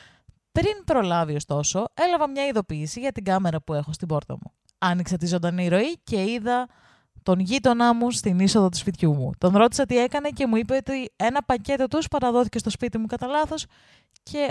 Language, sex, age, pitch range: Greek, female, 20-39, 190-260 Hz